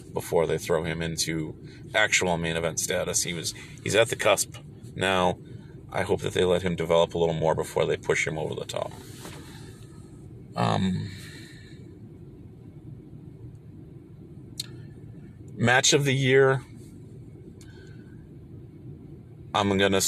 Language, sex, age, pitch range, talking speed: English, male, 40-59, 95-130 Hz, 120 wpm